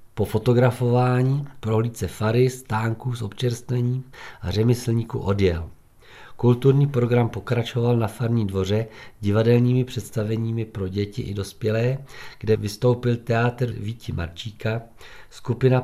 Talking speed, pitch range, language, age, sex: 105 wpm, 105-125 Hz, Czech, 50-69, male